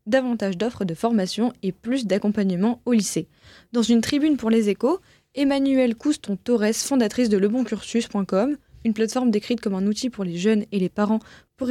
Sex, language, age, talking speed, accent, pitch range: female, French, 20-39, 175 wpm, French, 200-250 Hz